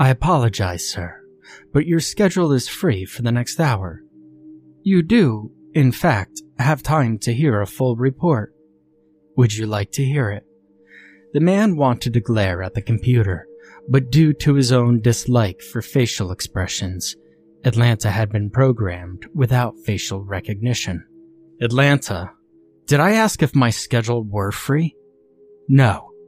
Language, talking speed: English, 145 wpm